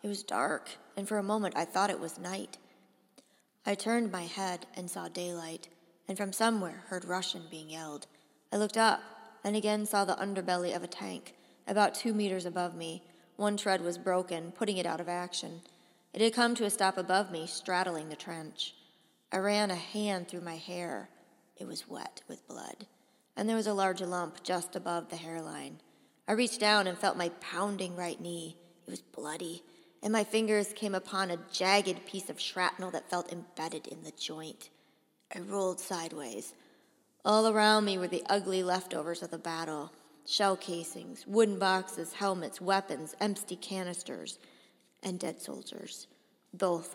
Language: English